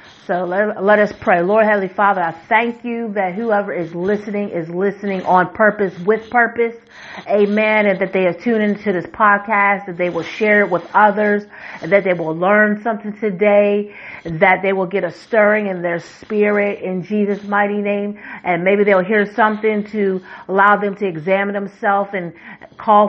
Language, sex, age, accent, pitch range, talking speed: English, female, 40-59, American, 190-220 Hz, 180 wpm